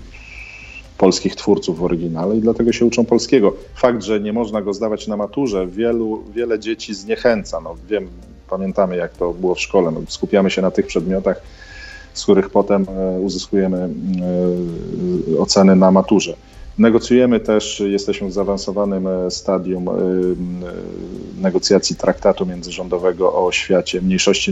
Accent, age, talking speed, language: native, 40-59, 130 wpm, Polish